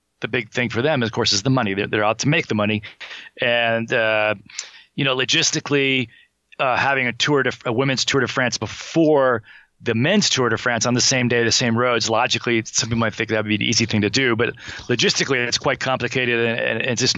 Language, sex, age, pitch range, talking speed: English, male, 40-59, 110-130 Hz, 230 wpm